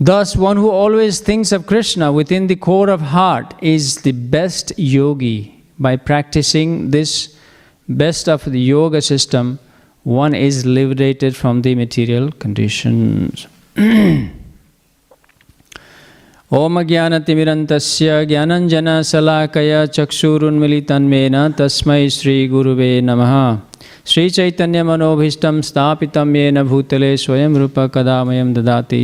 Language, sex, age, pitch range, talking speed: English, male, 50-69, 130-160 Hz, 105 wpm